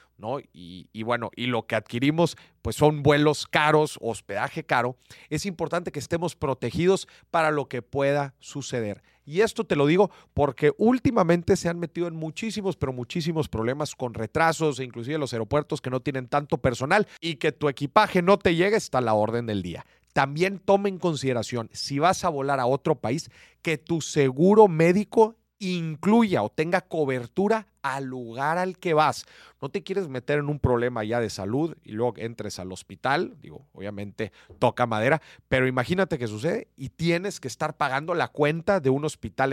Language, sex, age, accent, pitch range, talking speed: Spanish, male, 40-59, Mexican, 125-175 Hz, 180 wpm